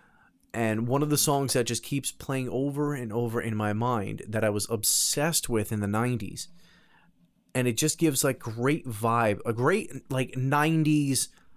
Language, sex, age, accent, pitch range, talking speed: English, male, 30-49, American, 110-140 Hz, 175 wpm